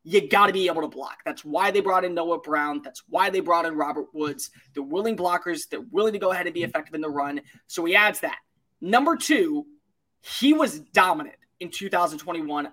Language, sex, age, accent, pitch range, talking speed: English, male, 20-39, American, 160-205 Hz, 215 wpm